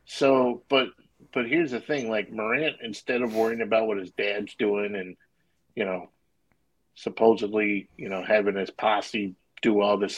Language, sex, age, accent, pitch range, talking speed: English, male, 50-69, American, 100-120 Hz, 165 wpm